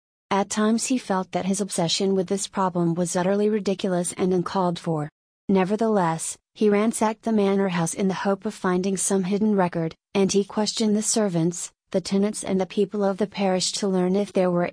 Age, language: 30-49, English